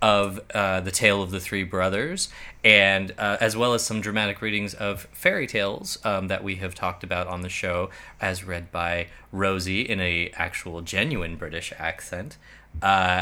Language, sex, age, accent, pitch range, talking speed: English, male, 20-39, American, 95-140 Hz, 175 wpm